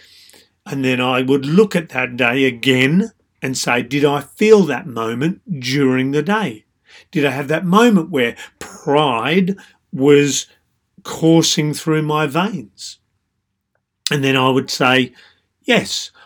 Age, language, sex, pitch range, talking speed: 40-59, English, male, 130-165 Hz, 135 wpm